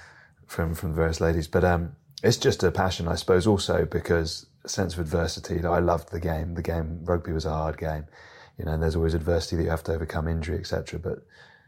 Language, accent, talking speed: English, British, 215 wpm